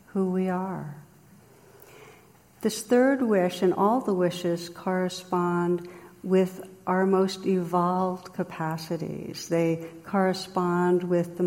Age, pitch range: 60-79, 165-190 Hz